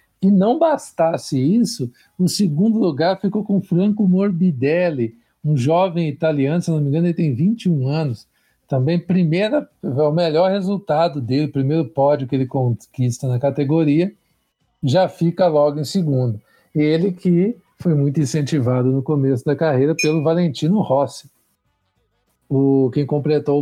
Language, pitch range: Portuguese, 130-175 Hz